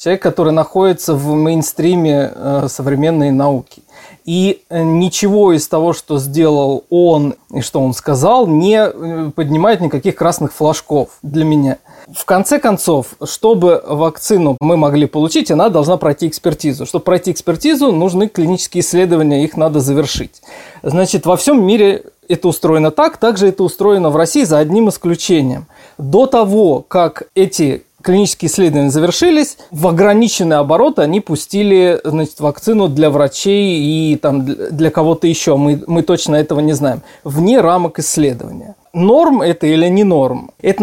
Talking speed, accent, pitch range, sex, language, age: 145 wpm, native, 150-195 Hz, male, Russian, 20-39